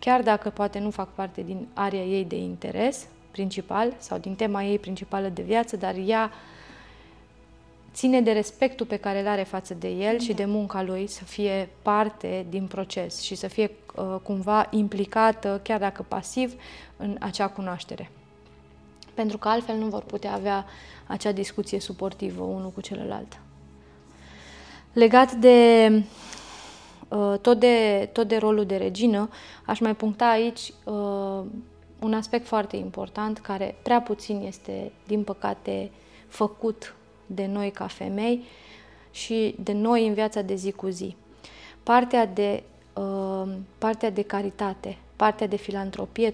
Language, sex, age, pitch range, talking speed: Romanian, female, 20-39, 195-220 Hz, 145 wpm